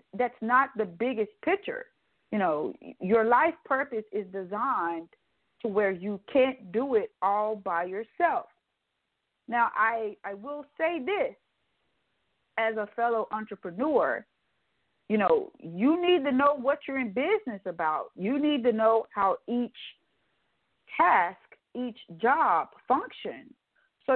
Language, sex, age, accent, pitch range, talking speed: English, female, 40-59, American, 205-270 Hz, 130 wpm